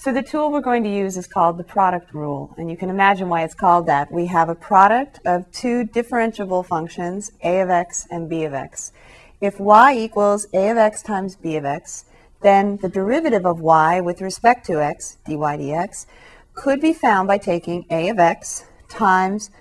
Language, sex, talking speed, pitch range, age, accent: English, female, 200 wpm, 170-215 Hz, 40-59, American